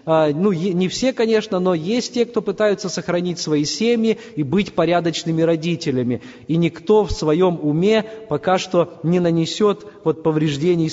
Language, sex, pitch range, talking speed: Russian, male, 165-220 Hz, 145 wpm